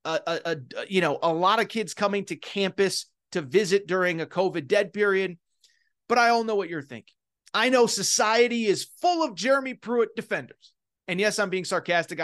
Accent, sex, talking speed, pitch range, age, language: American, male, 195 wpm, 190-235 Hz, 30-49, English